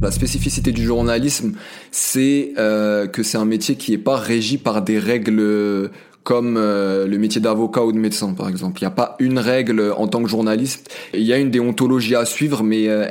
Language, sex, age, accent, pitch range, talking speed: French, male, 20-39, French, 110-130 Hz, 210 wpm